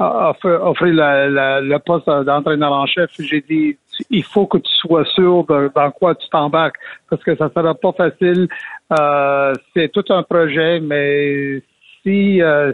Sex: male